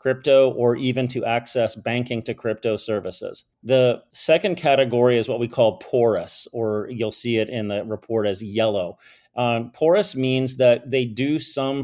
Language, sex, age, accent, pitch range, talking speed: English, male, 40-59, American, 110-125 Hz, 165 wpm